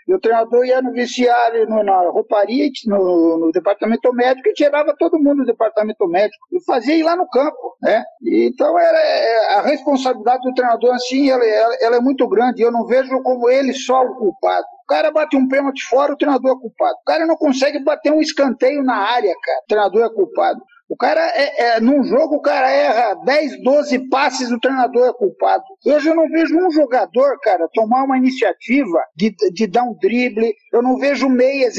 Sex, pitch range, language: male, 235-310 Hz, Portuguese